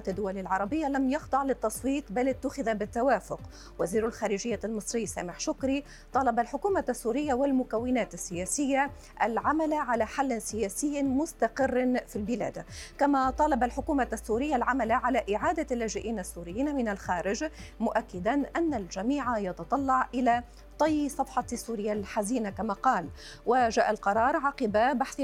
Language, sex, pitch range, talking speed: Arabic, female, 210-270 Hz, 120 wpm